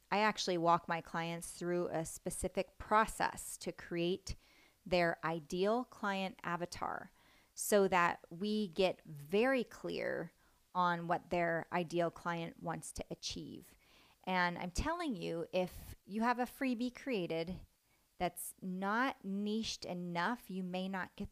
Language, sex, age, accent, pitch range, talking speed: English, female, 30-49, American, 165-200 Hz, 130 wpm